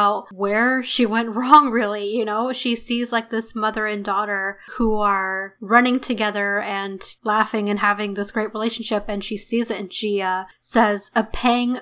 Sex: female